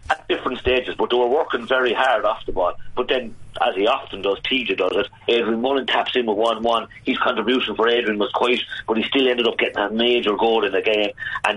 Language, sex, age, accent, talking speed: English, male, 40-59, British, 240 wpm